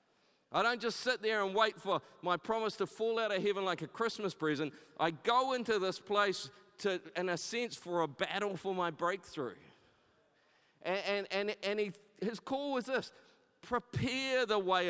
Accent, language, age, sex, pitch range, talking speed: Australian, English, 50-69, male, 185-230 Hz, 185 wpm